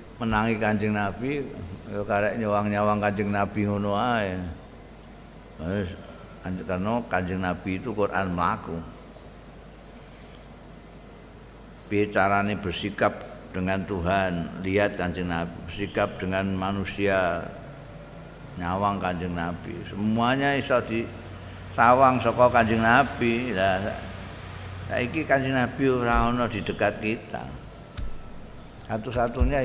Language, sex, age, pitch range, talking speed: Indonesian, male, 50-69, 95-120 Hz, 85 wpm